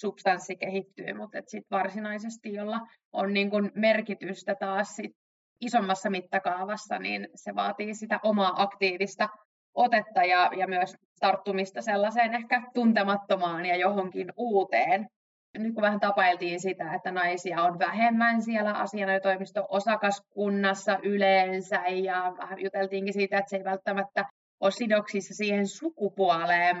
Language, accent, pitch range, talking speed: Finnish, native, 185-210 Hz, 130 wpm